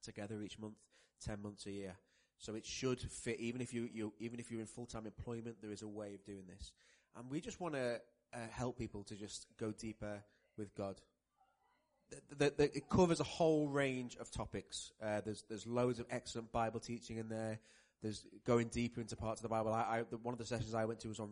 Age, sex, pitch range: 20-39, male, 105-120 Hz